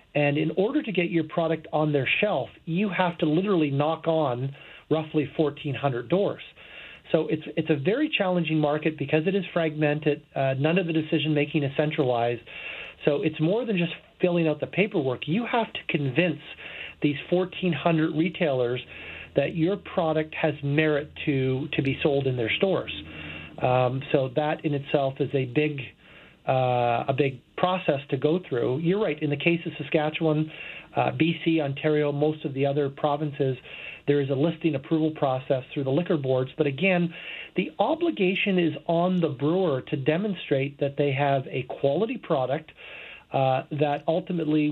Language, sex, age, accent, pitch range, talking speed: English, male, 40-59, American, 140-165 Hz, 165 wpm